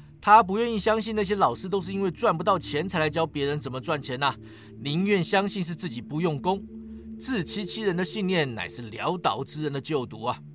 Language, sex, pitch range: Chinese, male, 125-190 Hz